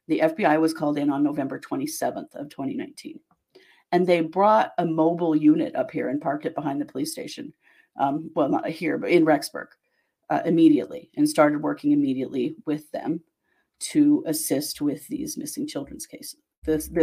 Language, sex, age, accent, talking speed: English, female, 40-59, American, 170 wpm